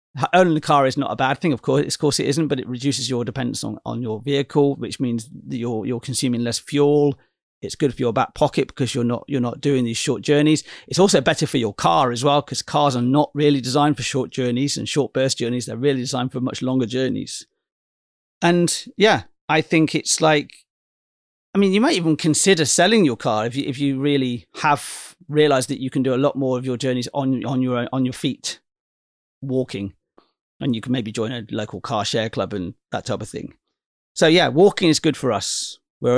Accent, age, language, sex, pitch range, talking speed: British, 40-59, English, male, 120-150 Hz, 225 wpm